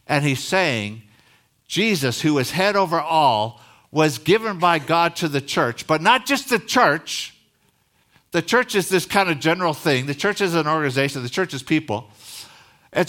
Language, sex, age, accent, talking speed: English, male, 60-79, American, 180 wpm